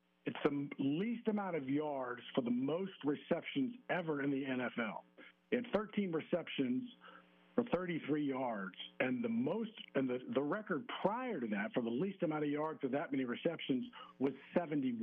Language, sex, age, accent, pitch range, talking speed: English, male, 50-69, American, 135-200 Hz, 185 wpm